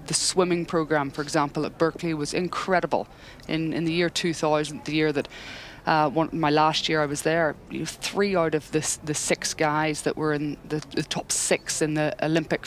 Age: 20-39